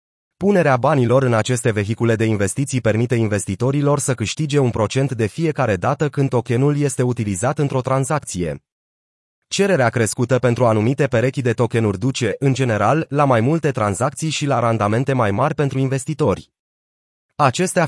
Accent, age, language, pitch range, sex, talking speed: native, 30-49, Romanian, 115-150 Hz, male, 150 wpm